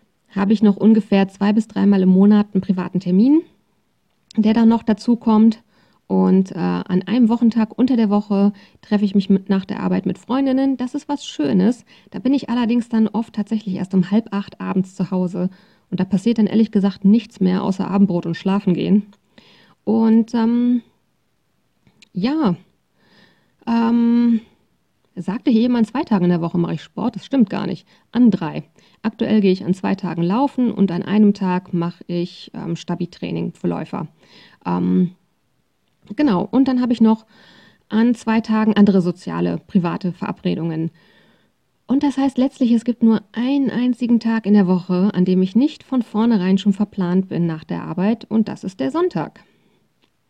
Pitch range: 185-230 Hz